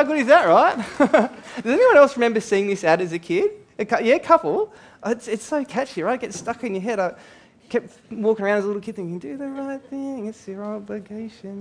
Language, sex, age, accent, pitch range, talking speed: English, male, 20-39, Australian, 175-240 Hz, 245 wpm